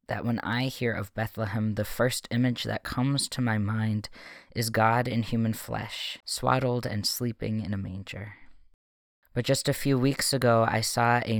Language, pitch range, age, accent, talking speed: English, 95-120 Hz, 20-39, American, 180 wpm